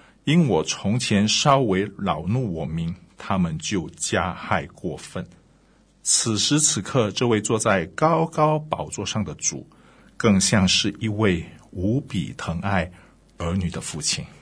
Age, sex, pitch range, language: 50-69, male, 95-120 Hz, Chinese